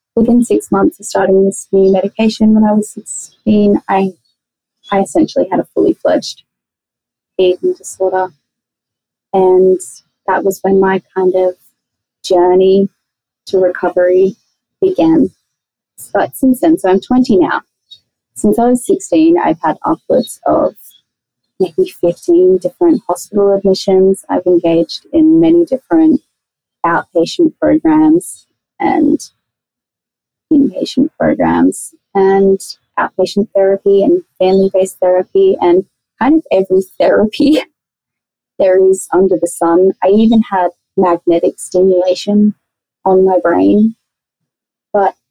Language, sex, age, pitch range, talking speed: English, female, 30-49, 185-270 Hz, 115 wpm